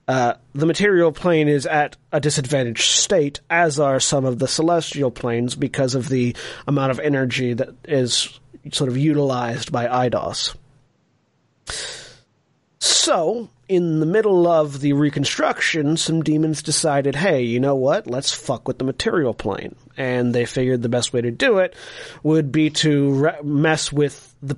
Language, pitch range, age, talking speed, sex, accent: English, 125-155 Hz, 30-49, 160 wpm, male, American